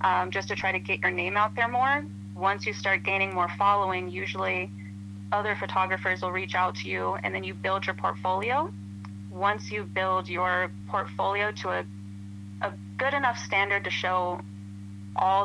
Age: 30-49